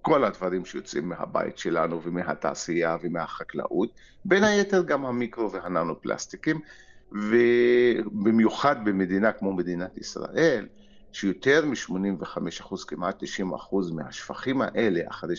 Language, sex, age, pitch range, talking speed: Hebrew, male, 50-69, 90-120 Hz, 100 wpm